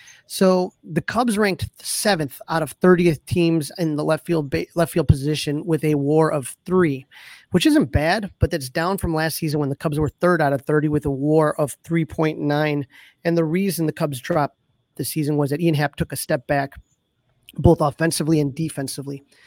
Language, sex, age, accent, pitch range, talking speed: English, male, 30-49, American, 145-170 Hz, 195 wpm